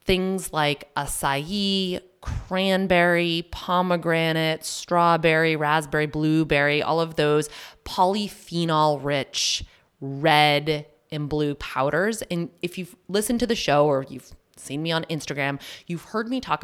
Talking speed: 120 wpm